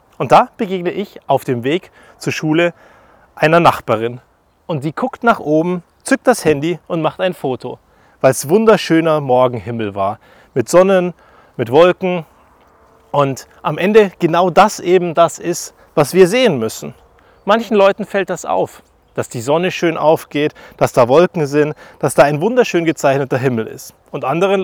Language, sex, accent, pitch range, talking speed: German, male, German, 140-190 Hz, 165 wpm